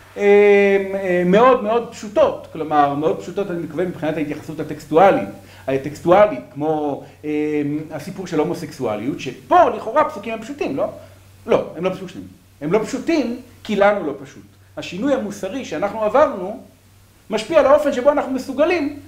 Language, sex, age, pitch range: Hebrew, male, 40-59, 135-225 Hz